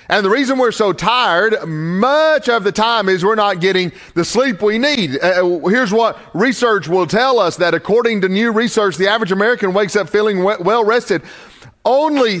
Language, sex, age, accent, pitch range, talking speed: English, male, 40-59, American, 185-235 Hz, 190 wpm